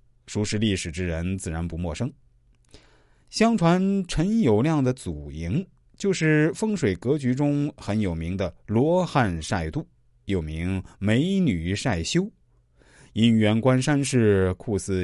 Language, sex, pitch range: Chinese, male, 90-145 Hz